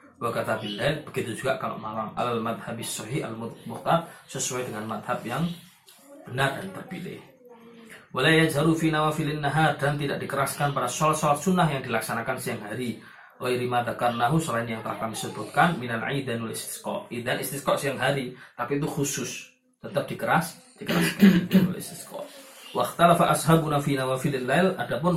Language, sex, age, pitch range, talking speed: Malay, male, 20-39, 125-180 Hz, 150 wpm